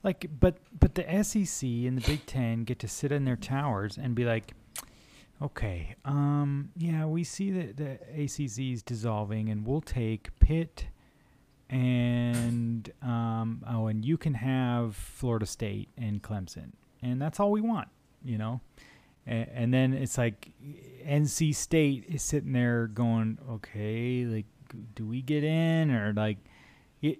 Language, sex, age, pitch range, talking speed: English, male, 30-49, 115-150 Hz, 155 wpm